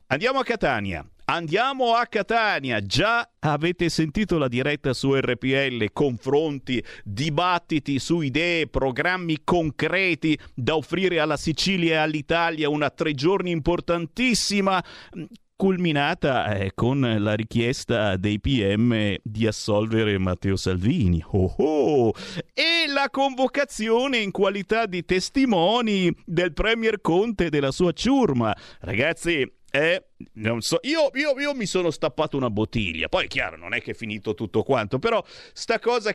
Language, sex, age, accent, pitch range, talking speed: Italian, male, 50-69, native, 125-200 Hz, 130 wpm